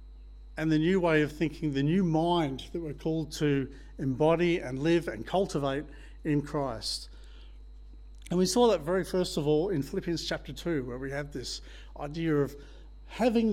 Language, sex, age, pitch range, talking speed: English, male, 50-69, 135-170 Hz, 175 wpm